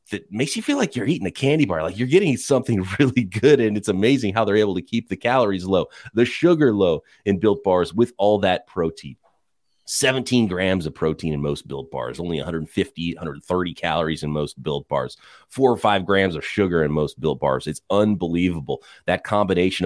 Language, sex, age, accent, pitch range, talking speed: English, male, 30-49, American, 90-115 Hz, 200 wpm